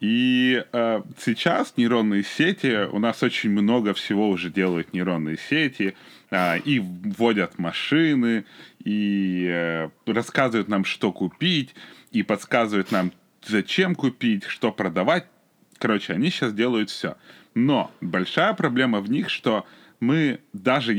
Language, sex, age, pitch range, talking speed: Ukrainian, male, 20-39, 100-145 Hz, 125 wpm